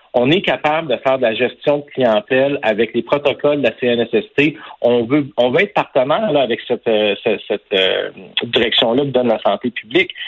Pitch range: 120-160 Hz